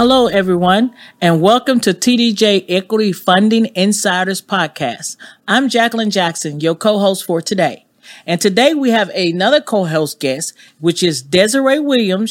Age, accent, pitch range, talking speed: 40-59, American, 175-230 Hz, 135 wpm